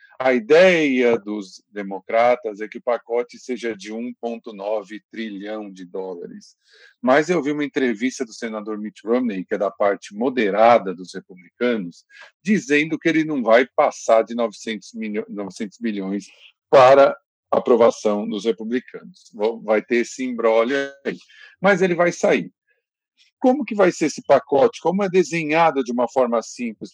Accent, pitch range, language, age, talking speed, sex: Brazilian, 115-185 Hz, Portuguese, 50-69, 150 wpm, male